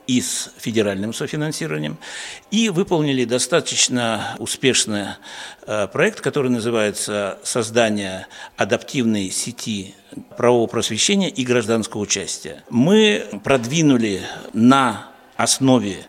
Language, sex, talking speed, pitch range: Russian, male, 85 wpm, 110-135 Hz